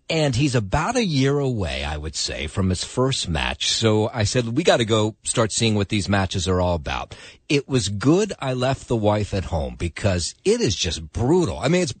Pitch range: 100-145 Hz